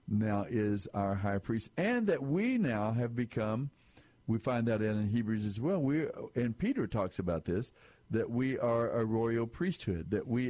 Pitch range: 105-120 Hz